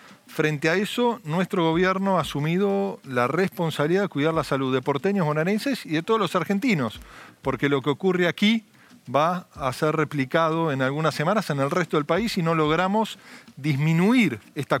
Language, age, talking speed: Spanish, 40-59, 175 wpm